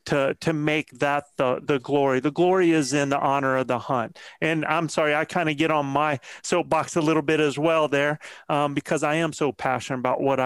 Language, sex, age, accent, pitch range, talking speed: English, male, 30-49, American, 140-165 Hz, 230 wpm